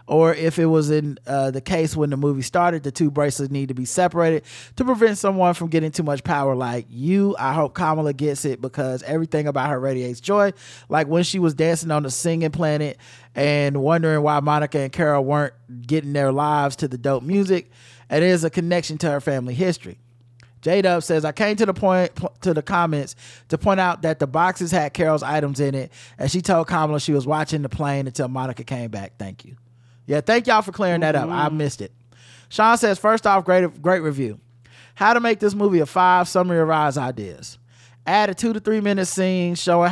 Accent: American